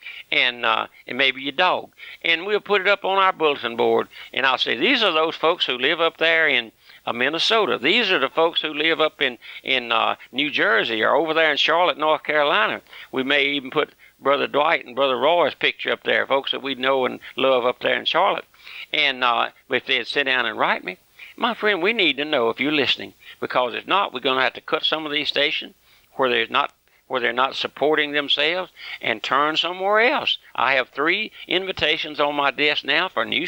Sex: male